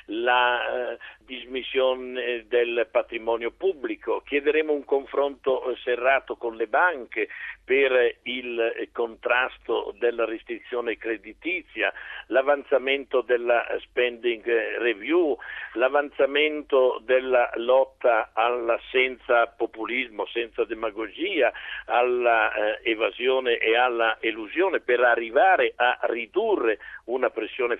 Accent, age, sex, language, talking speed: native, 60-79, male, Italian, 95 wpm